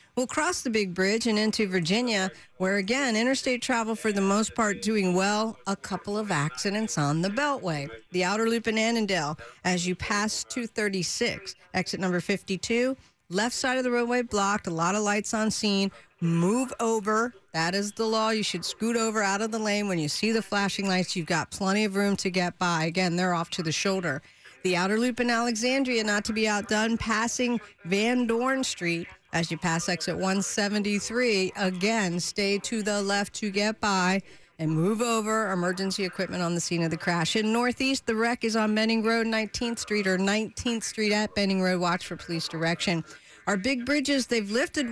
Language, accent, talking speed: English, American, 195 wpm